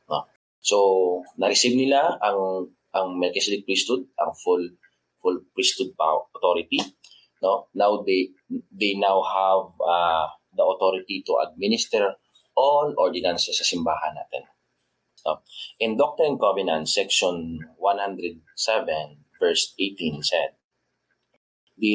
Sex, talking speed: male, 105 wpm